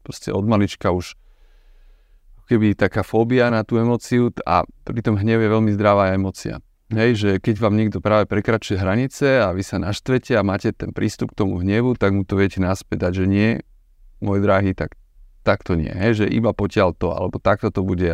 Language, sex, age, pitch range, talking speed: Slovak, male, 30-49, 95-115 Hz, 190 wpm